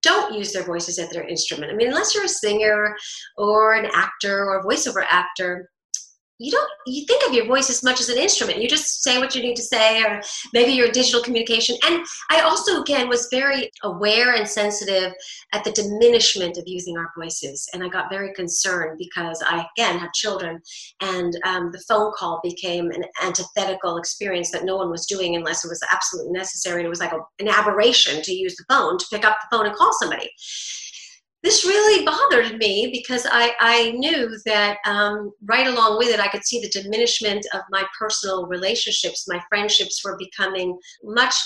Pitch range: 190-255 Hz